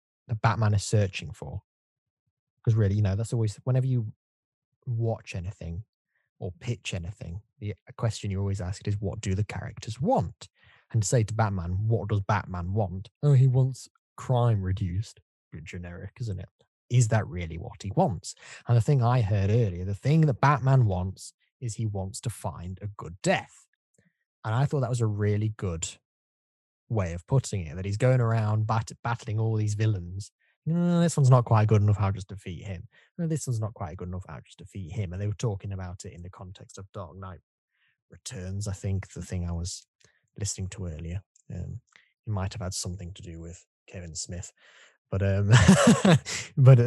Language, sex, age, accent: English, male, 20-39, British